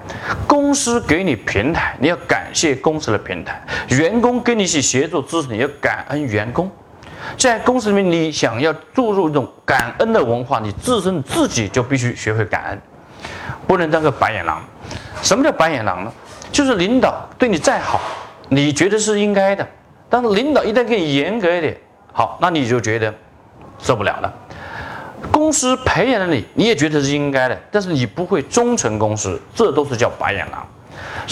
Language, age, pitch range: Chinese, 30-49, 110-180 Hz